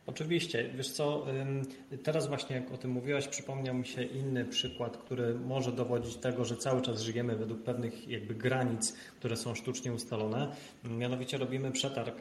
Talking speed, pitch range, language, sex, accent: 160 wpm, 120-140 Hz, Polish, male, native